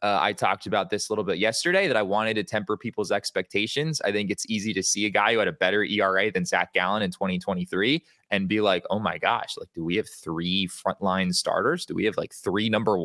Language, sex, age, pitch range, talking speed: English, male, 20-39, 95-135 Hz, 245 wpm